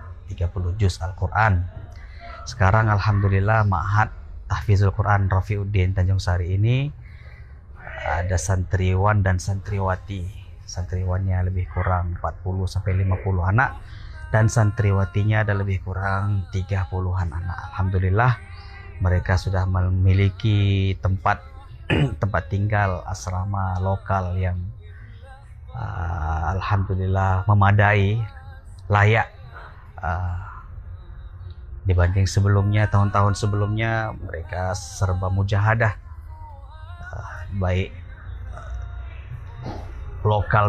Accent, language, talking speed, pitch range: native, Indonesian, 80 wpm, 90-105 Hz